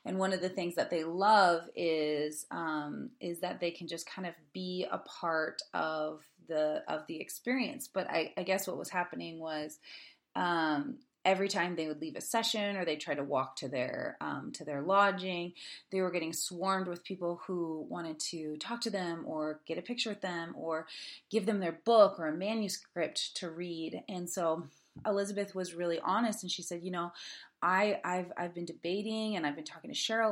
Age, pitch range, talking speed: 30-49, 165-200 Hz, 200 wpm